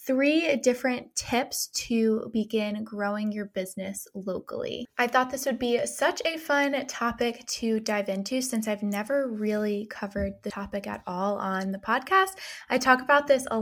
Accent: American